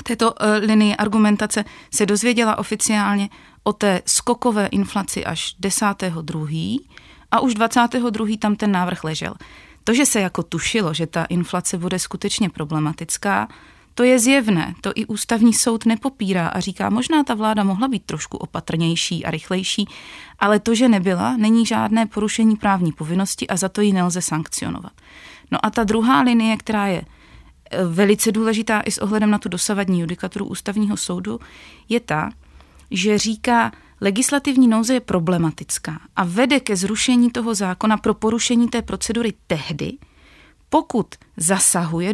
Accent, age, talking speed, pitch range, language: native, 30-49, 150 wpm, 185-230 Hz, Czech